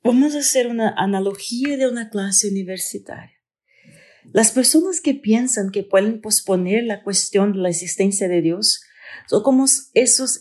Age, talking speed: 40-59, 150 wpm